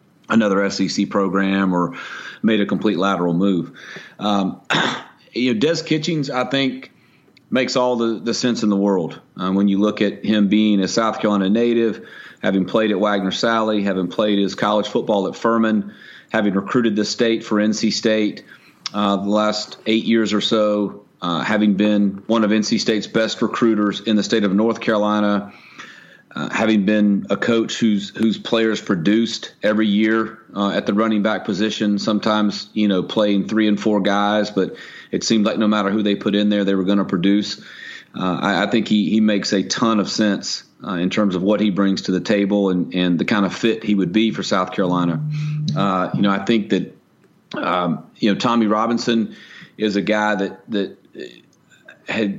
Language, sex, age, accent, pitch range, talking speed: English, male, 40-59, American, 100-110 Hz, 190 wpm